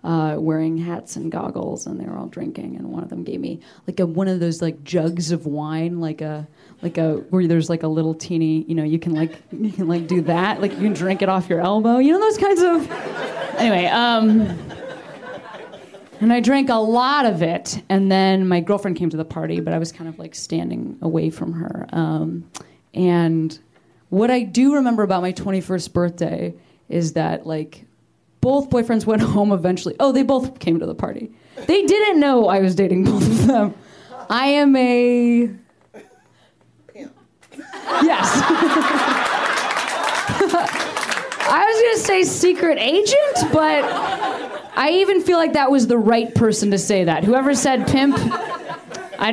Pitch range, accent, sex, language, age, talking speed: 170-255 Hz, American, female, English, 20-39, 180 wpm